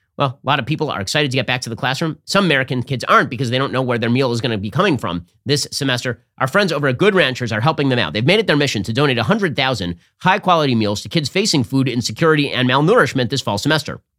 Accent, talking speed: American, 260 wpm